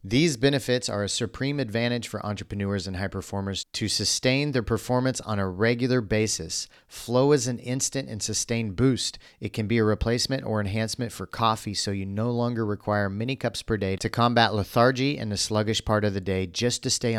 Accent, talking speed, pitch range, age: American, 200 wpm, 100-125 Hz, 40-59